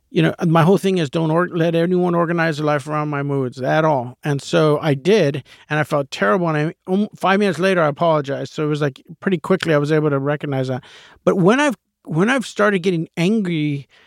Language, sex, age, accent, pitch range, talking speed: English, male, 50-69, American, 150-190 Hz, 220 wpm